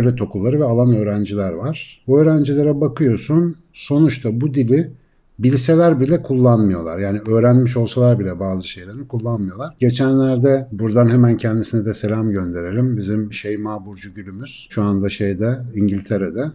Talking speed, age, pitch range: 135 wpm, 60-79, 110-140 Hz